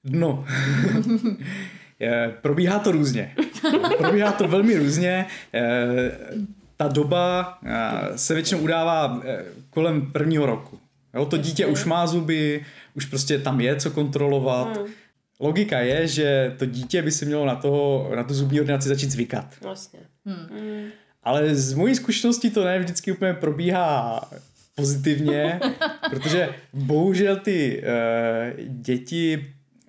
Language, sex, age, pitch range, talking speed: Czech, male, 20-39, 130-160 Hz, 120 wpm